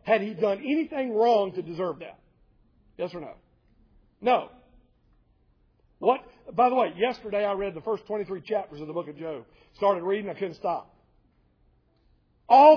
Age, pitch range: 50-69, 205-280 Hz